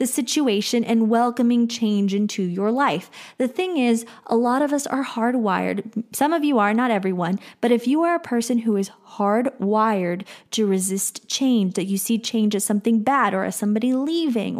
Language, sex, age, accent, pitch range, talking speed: English, female, 20-39, American, 200-240 Hz, 190 wpm